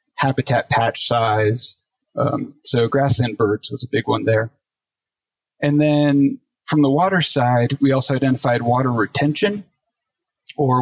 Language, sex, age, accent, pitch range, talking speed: English, male, 40-59, American, 120-145 Hz, 135 wpm